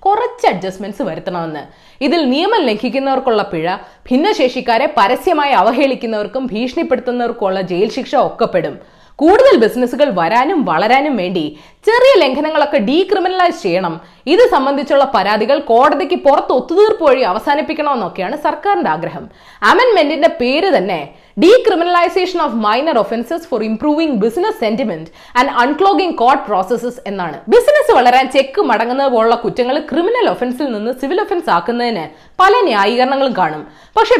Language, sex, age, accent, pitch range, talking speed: Malayalam, female, 20-39, native, 235-345 Hz, 110 wpm